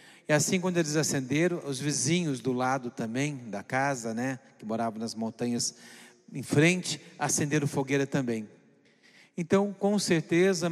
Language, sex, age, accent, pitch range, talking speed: Portuguese, male, 40-59, Brazilian, 130-165 Hz, 140 wpm